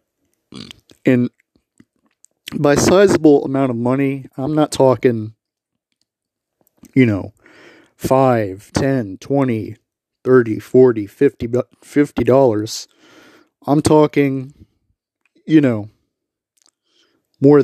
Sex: male